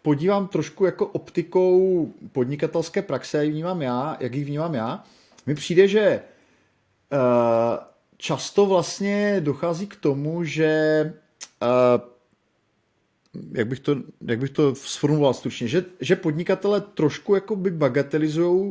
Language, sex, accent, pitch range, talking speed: Czech, male, native, 145-180 Hz, 95 wpm